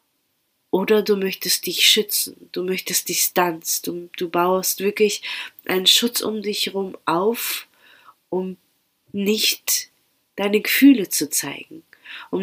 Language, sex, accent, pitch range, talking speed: German, female, German, 175-215 Hz, 120 wpm